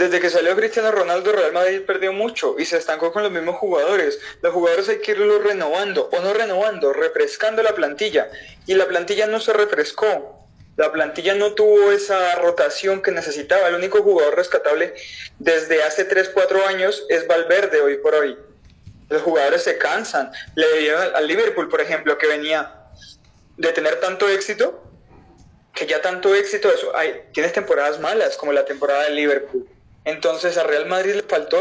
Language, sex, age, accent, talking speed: Spanish, male, 20-39, Colombian, 170 wpm